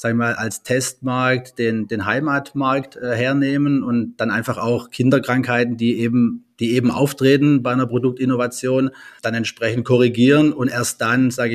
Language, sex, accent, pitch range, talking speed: German, male, German, 110-125 Hz, 150 wpm